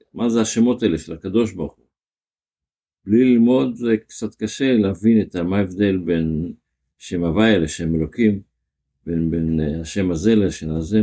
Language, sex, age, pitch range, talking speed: Hebrew, male, 60-79, 85-110 Hz, 145 wpm